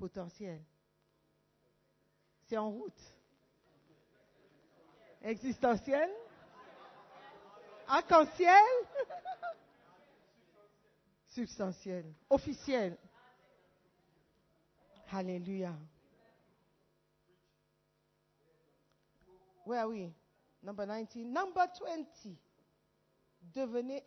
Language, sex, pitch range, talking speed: French, female, 175-245 Hz, 40 wpm